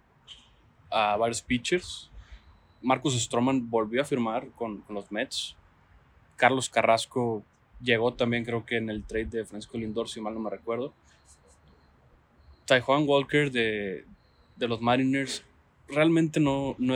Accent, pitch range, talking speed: Mexican, 110-125 Hz, 140 wpm